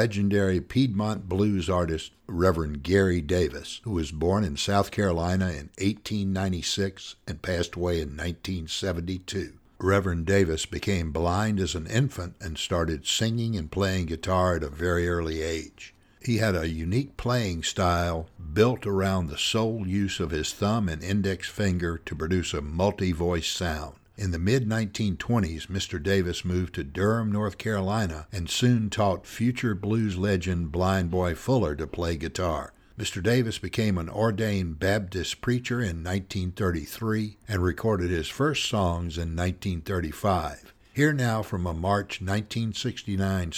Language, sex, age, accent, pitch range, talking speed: English, male, 60-79, American, 85-105 Hz, 145 wpm